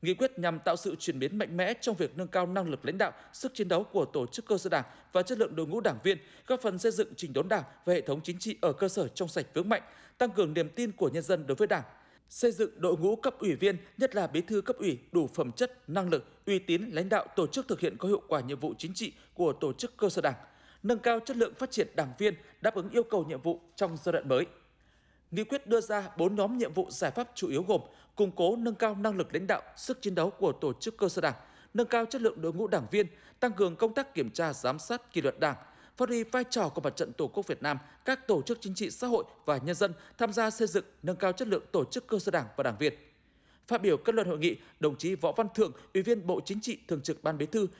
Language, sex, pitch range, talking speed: Vietnamese, male, 175-230 Hz, 285 wpm